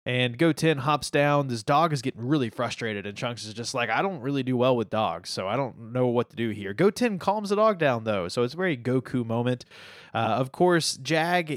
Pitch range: 120-155 Hz